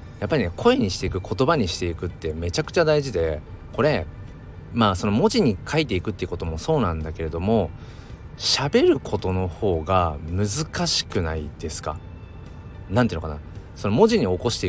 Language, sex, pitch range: Japanese, male, 85-115 Hz